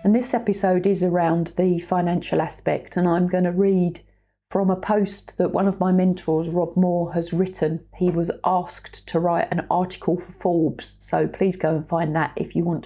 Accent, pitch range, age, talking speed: British, 170-205 Hz, 40-59, 200 wpm